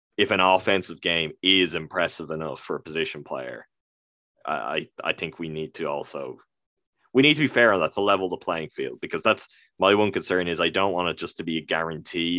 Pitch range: 85-100 Hz